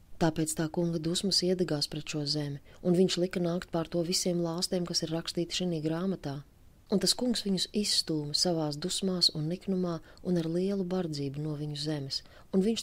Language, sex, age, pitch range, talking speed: Russian, female, 30-49, 150-180 Hz, 180 wpm